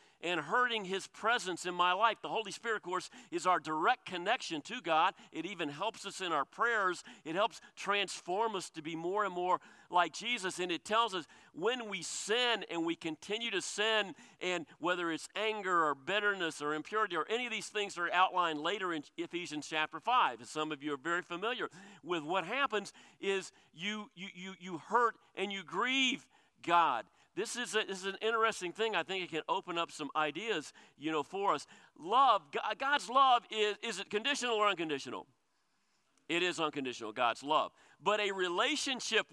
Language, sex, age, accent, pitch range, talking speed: English, male, 50-69, American, 165-225 Hz, 190 wpm